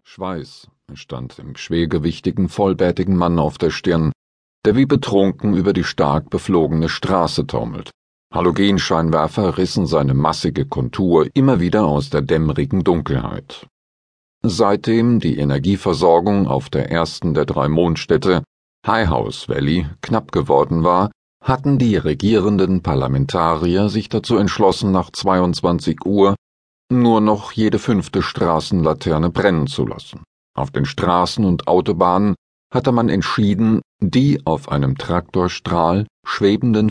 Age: 40-59